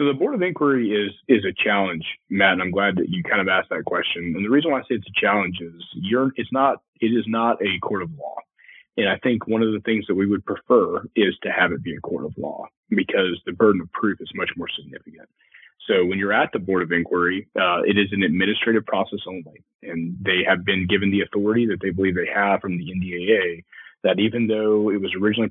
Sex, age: male, 30-49